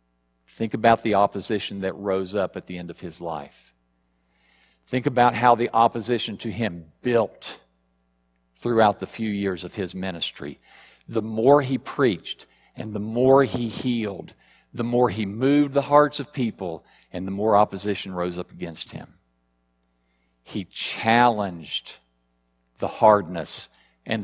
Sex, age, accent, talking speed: male, 50-69, American, 145 wpm